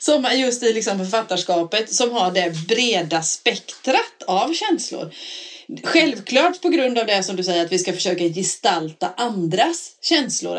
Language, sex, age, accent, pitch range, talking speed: Swedish, female, 30-49, native, 175-235 Hz, 145 wpm